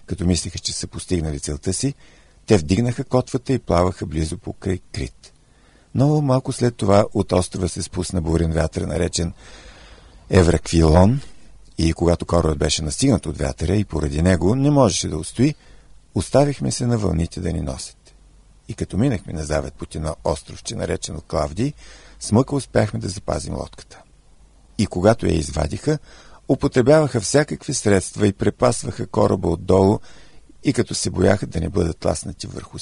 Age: 50-69